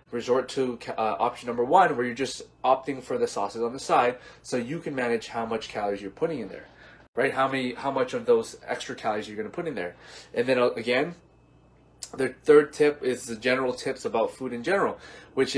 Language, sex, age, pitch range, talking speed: English, male, 20-39, 120-155 Hz, 225 wpm